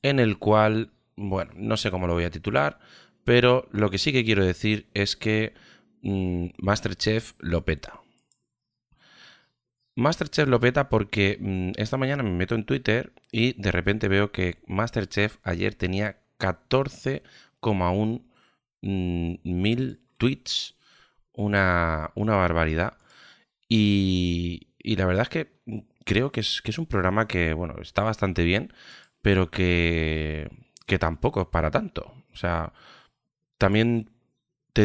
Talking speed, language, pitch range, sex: 135 wpm, Spanish, 85-110 Hz, male